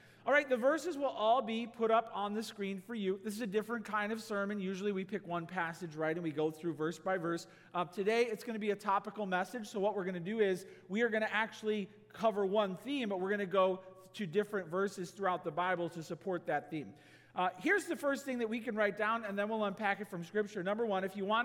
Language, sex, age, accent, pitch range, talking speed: English, male, 40-59, American, 185-230 Hz, 265 wpm